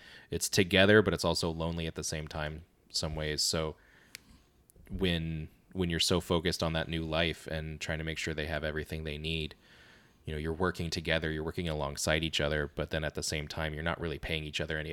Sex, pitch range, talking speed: male, 75-85 Hz, 220 wpm